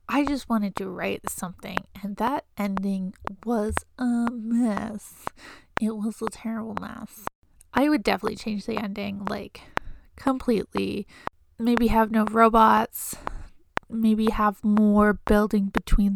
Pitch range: 205-230 Hz